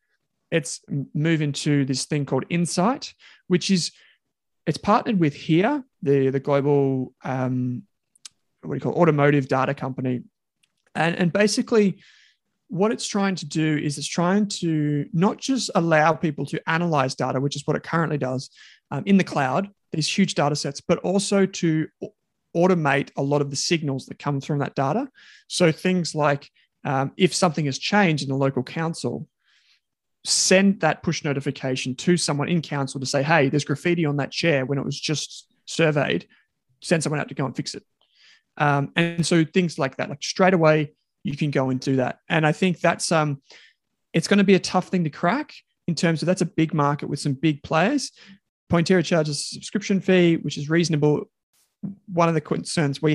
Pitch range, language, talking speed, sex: 145-180 Hz, English, 185 wpm, male